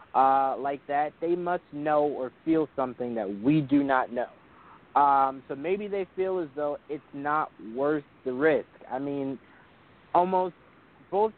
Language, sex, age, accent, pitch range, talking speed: English, male, 20-39, American, 135-165 Hz, 160 wpm